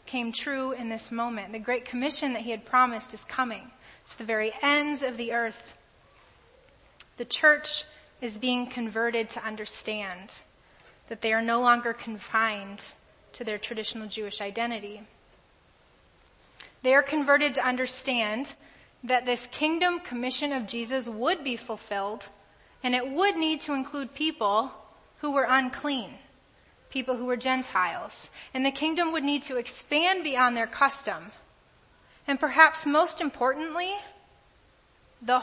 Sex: female